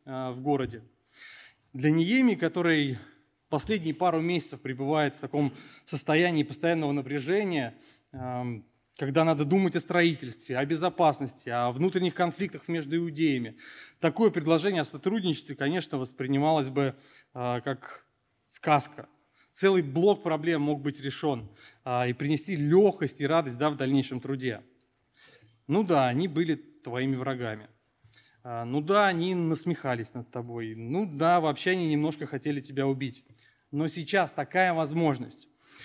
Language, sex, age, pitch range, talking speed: Russian, male, 20-39, 135-170 Hz, 120 wpm